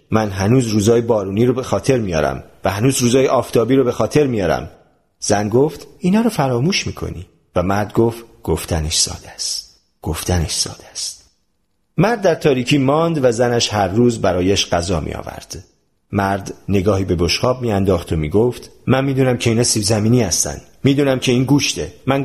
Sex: male